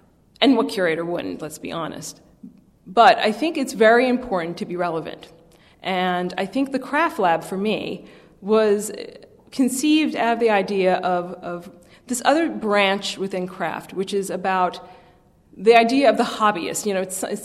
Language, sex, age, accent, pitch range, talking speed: English, female, 40-59, American, 180-230 Hz, 170 wpm